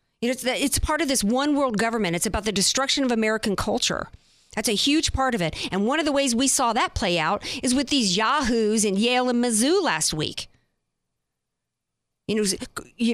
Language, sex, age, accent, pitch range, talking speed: English, female, 50-69, American, 205-265 Hz, 215 wpm